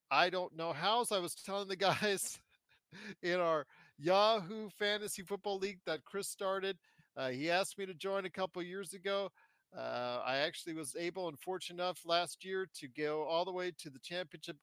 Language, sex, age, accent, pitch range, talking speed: English, male, 40-59, American, 150-195 Hz, 195 wpm